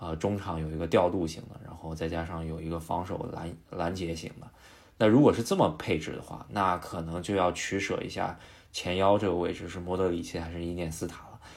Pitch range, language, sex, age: 85-100 Hz, Chinese, male, 20-39